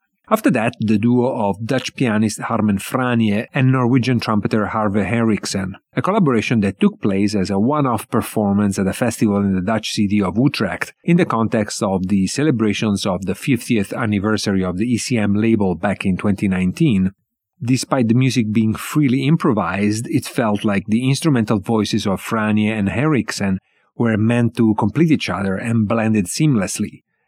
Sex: male